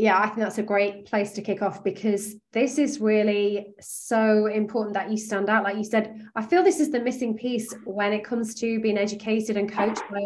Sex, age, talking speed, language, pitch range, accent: female, 20-39, 230 wpm, English, 200-245 Hz, British